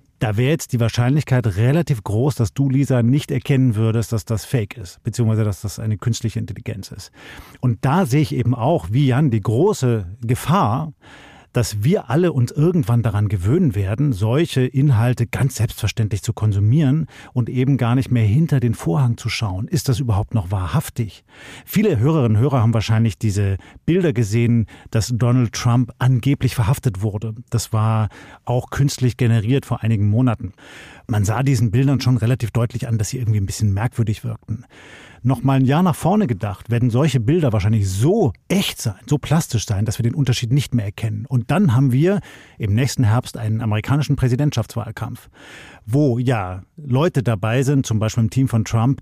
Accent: German